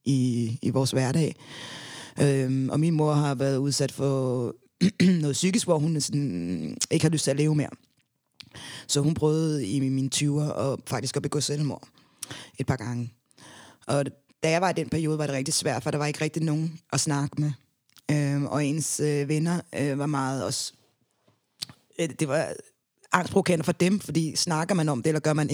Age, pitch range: 20-39, 140-155 Hz